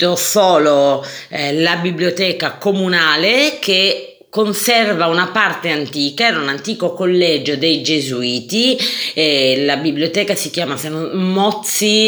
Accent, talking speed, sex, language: native, 110 wpm, female, Italian